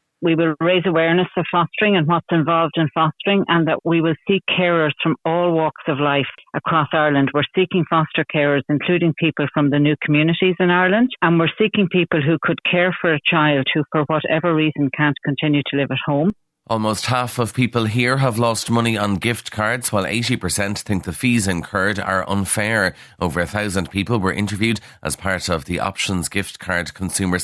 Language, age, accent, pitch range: English, 60-79, Irish, 95-155 Hz